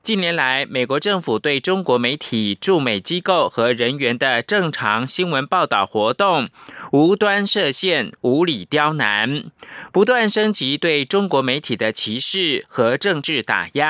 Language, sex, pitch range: German, male, 140-195 Hz